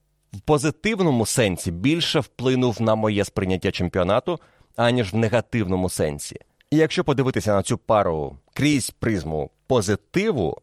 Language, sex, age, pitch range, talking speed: Ukrainian, male, 30-49, 95-130 Hz, 125 wpm